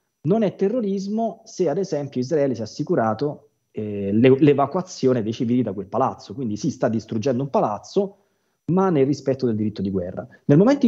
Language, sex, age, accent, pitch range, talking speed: Italian, male, 20-39, native, 105-130 Hz, 175 wpm